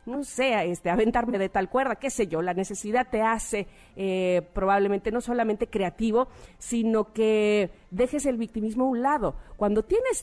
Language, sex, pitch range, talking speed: Spanish, female, 195-245 Hz, 170 wpm